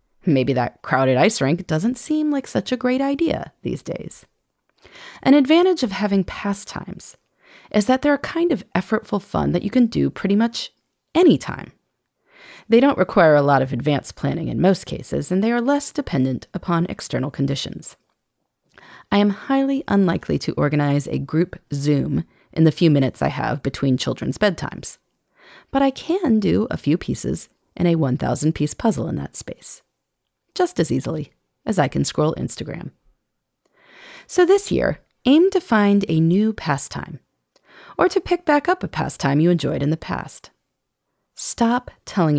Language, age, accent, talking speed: English, 30-49, American, 165 wpm